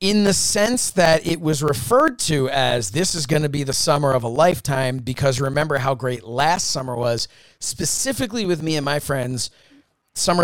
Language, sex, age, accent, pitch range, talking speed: English, male, 30-49, American, 125-155 Hz, 185 wpm